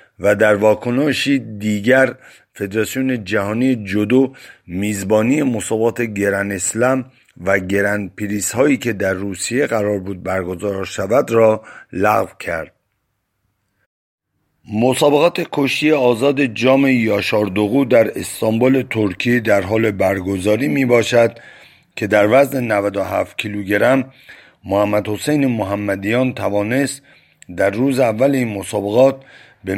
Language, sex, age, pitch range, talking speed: Persian, male, 50-69, 105-130 Hz, 105 wpm